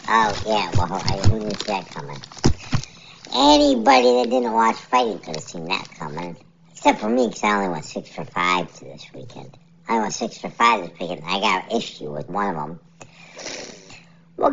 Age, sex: 50-69, male